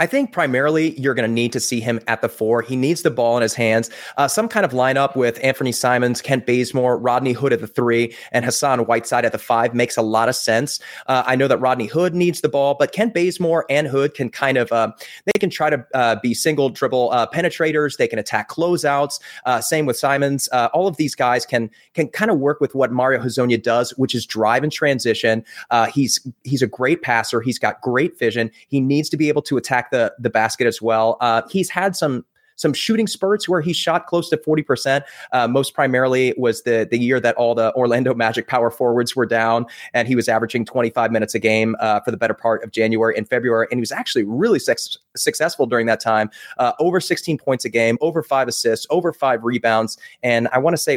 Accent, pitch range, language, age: American, 120-145 Hz, English, 30-49